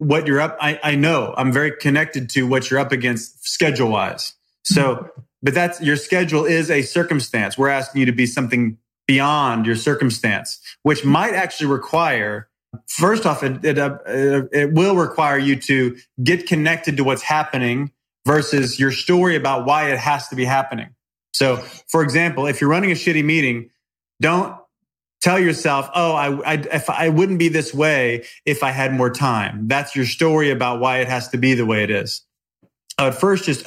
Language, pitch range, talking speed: English, 130-160 Hz, 185 wpm